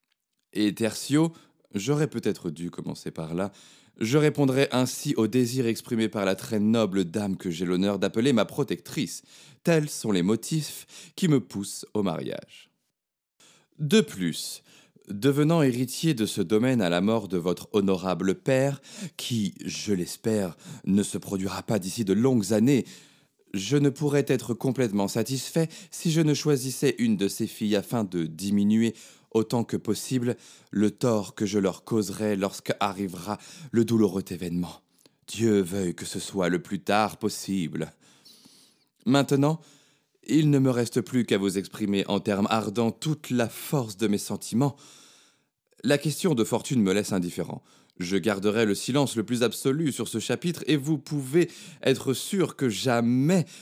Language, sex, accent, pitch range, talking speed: French, male, French, 100-140 Hz, 160 wpm